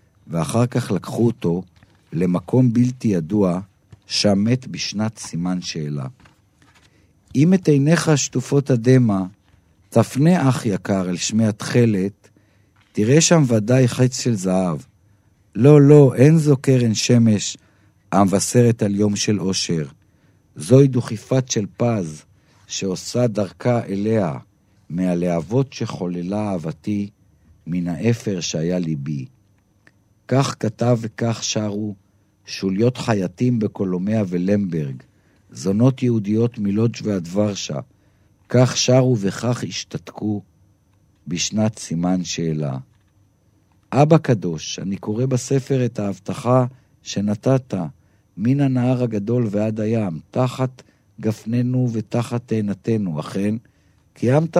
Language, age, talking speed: Hebrew, 50-69, 100 wpm